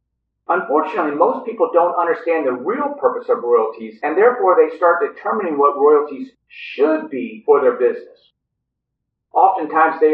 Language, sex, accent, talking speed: English, male, American, 140 wpm